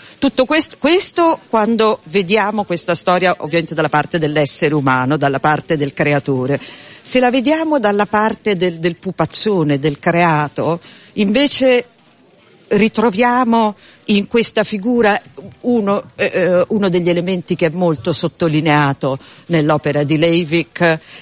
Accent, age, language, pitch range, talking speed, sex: native, 50-69, Italian, 155-205 Hz, 120 wpm, female